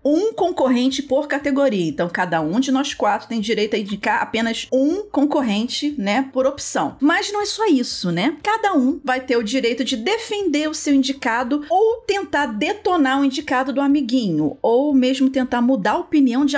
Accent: Brazilian